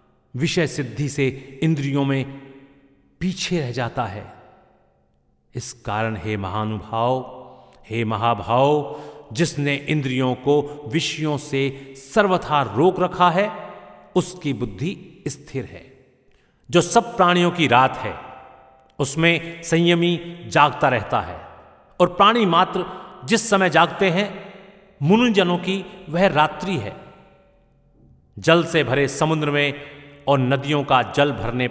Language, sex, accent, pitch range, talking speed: Hindi, male, native, 130-175 Hz, 115 wpm